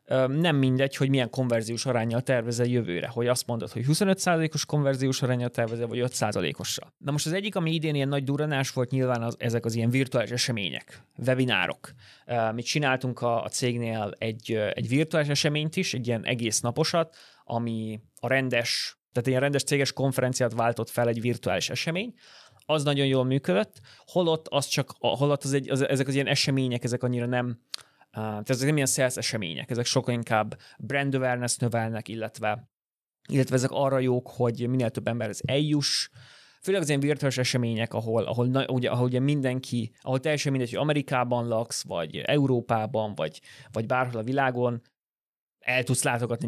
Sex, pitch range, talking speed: male, 120-140 Hz, 175 wpm